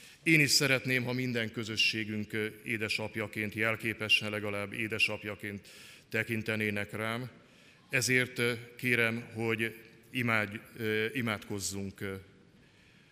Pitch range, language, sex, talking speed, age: 105-120 Hz, Hungarian, male, 80 wpm, 50-69